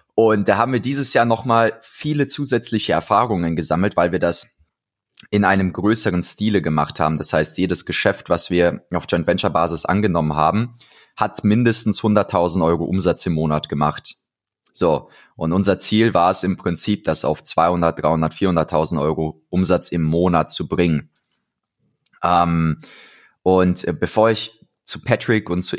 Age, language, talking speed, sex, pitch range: 20-39, German, 155 wpm, male, 85-110 Hz